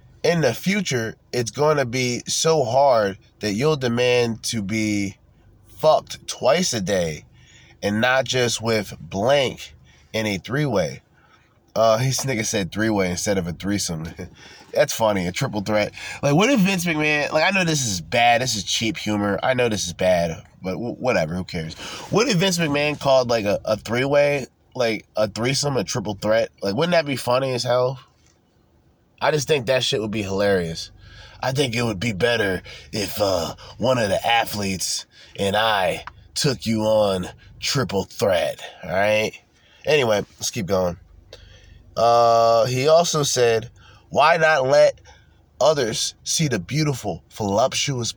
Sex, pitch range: male, 100-135 Hz